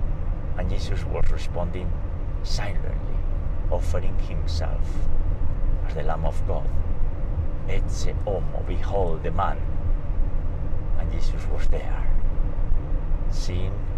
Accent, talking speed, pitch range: Spanish, 85 wpm, 80-95 Hz